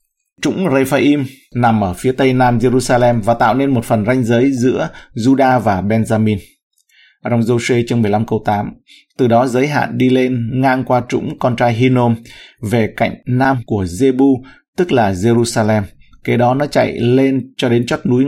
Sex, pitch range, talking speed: male, 115-135 Hz, 180 wpm